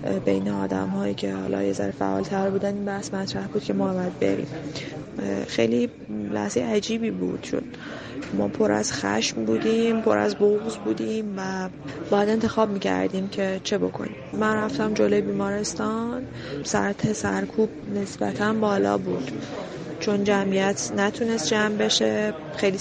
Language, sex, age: Persian, female, 20-39